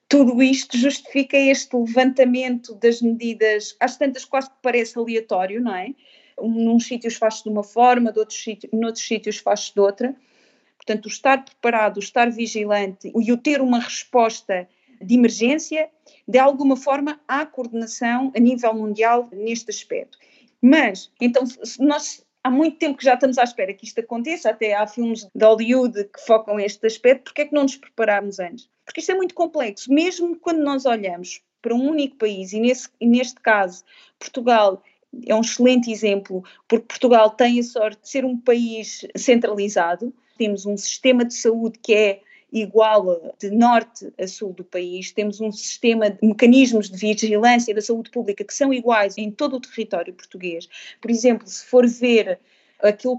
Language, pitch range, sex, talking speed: Portuguese, 215-260 Hz, female, 175 wpm